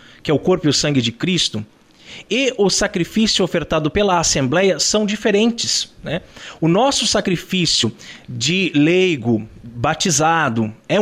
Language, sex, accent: Portuguese, male, Brazilian